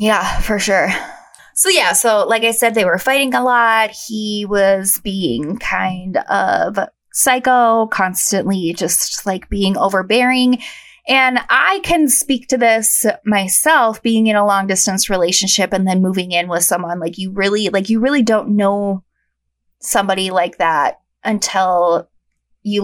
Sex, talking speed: female, 150 wpm